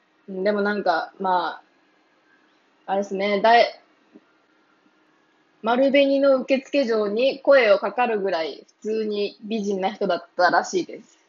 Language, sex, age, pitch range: Japanese, female, 20-39, 195-285 Hz